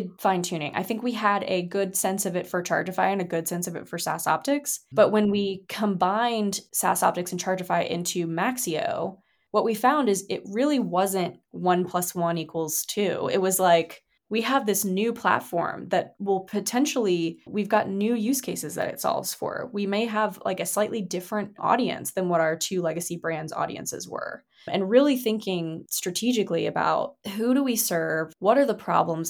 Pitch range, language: 170-205 Hz, English